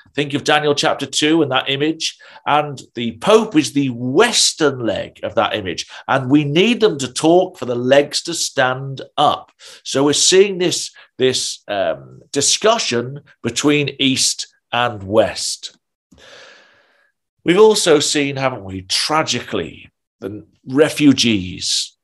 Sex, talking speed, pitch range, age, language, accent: male, 135 wpm, 110-155 Hz, 40-59, English, British